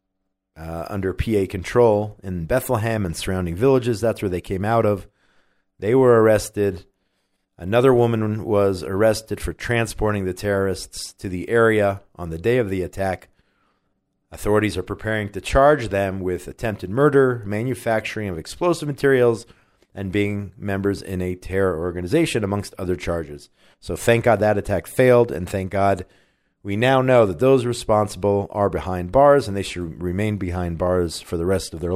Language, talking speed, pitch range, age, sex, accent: English, 165 wpm, 95-115 Hz, 40-59, male, American